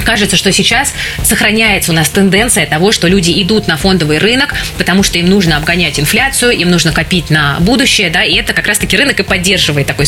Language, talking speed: Russian, 210 wpm